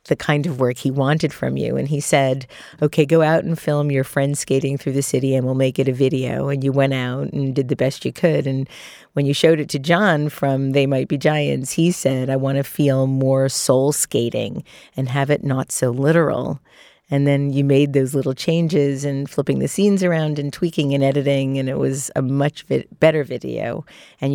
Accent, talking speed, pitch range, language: American, 220 wpm, 130-145 Hz, English